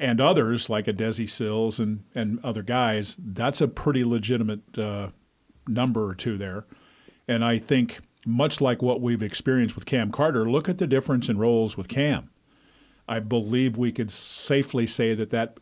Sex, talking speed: male, 175 wpm